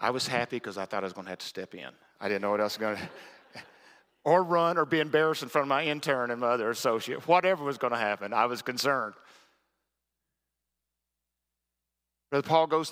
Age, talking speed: 40-59, 220 wpm